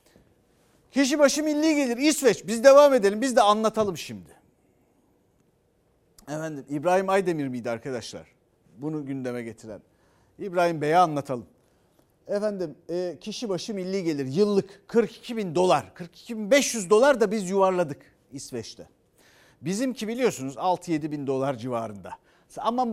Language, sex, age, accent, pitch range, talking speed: Turkish, male, 40-59, native, 145-215 Hz, 125 wpm